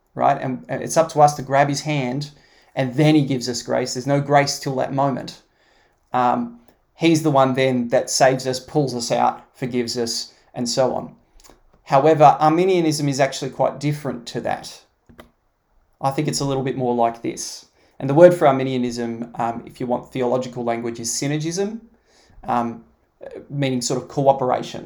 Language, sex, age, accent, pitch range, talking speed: English, male, 20-39, Australian, 125-155 Hz, 175 wpm